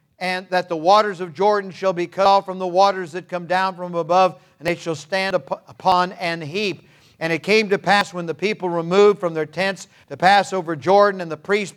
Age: 50-69